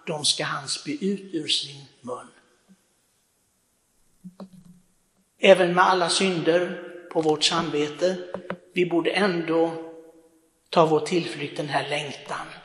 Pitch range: 150-180 Hz